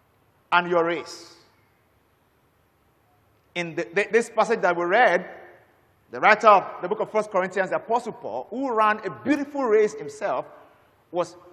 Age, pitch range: 50-69, 155-235 Hz